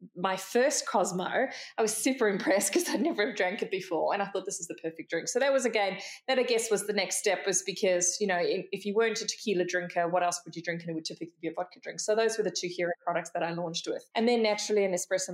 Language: English